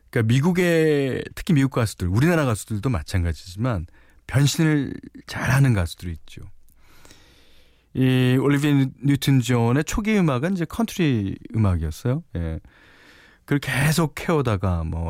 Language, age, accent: Korean, 40-59, native